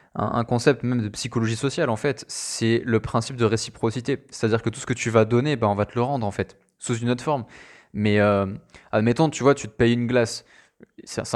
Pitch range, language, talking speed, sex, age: 110-125 Hz, French, 230 wpm, male, 20-39